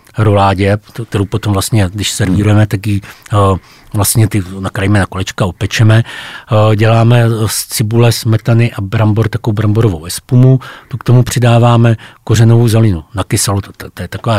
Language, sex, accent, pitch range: Czech, male, native, 105-115 Hz